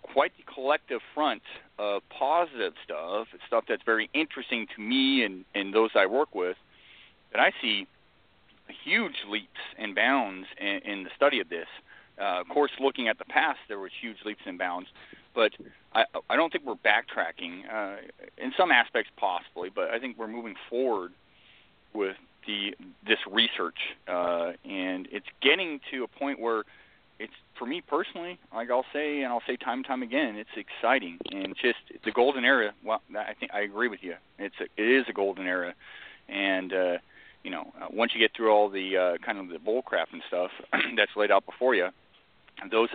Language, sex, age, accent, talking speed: English, male, 40-59, American, 190 wpm